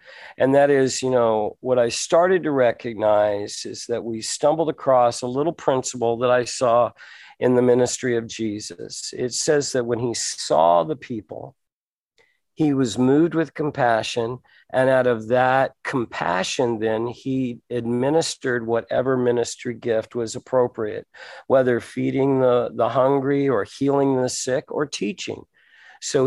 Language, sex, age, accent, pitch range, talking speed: English, male, 50-69, American, 120-140 Hz, 145 wpm